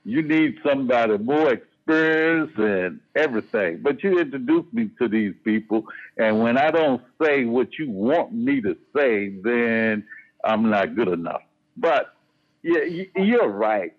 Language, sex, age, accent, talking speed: English, male, 60-79, American, 140 wpm